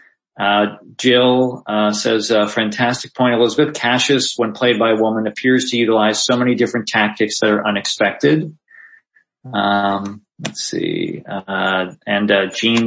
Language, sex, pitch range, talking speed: English, male, 105-125 Hz, 150 wpm